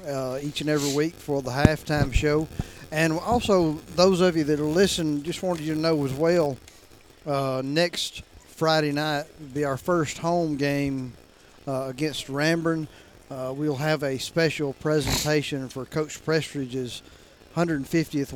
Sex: male